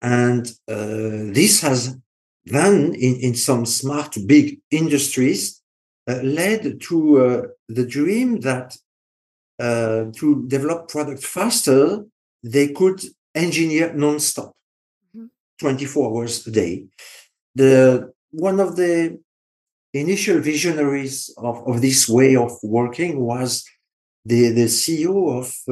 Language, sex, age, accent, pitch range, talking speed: English, male, 50-69, French, 120-155 Hz, 110 wpm